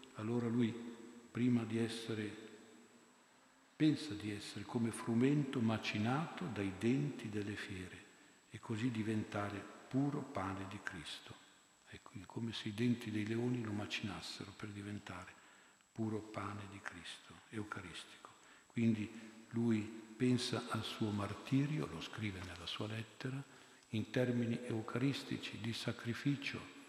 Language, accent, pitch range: Italian, native, 105-125 Hz